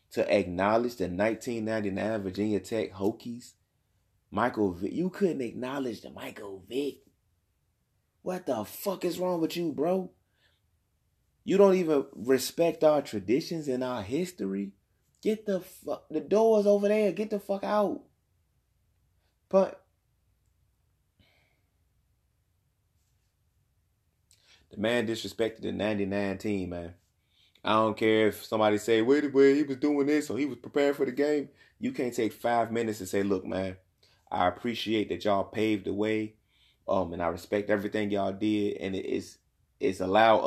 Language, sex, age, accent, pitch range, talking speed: English, male, 30-49, American, 95-145 Hz, 145 wpm